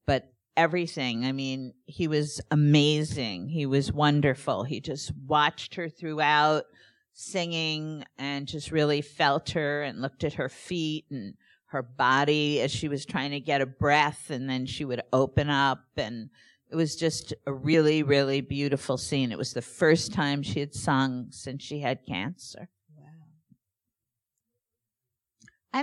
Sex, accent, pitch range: female, American, 140-170 Hz